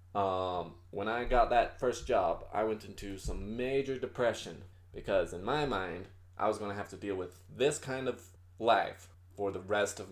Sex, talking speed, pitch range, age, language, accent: male, 195 wpm, 90-120 Hz, 20-39, English, American